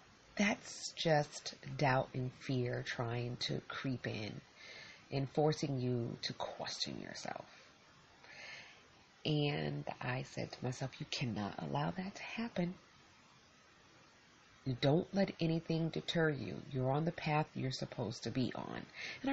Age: 30-49